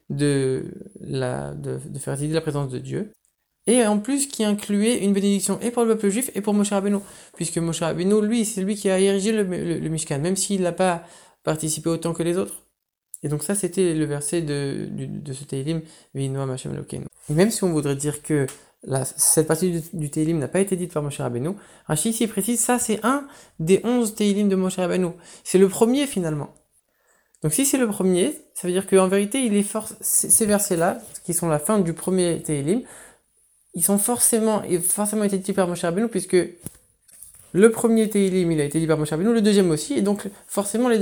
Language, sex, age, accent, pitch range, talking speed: French, male, 20-39, French, 155-205 Hz, 215 wpm